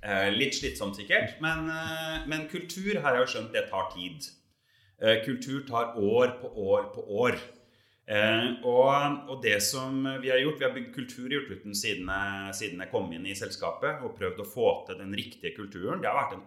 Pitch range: 105-160 Hz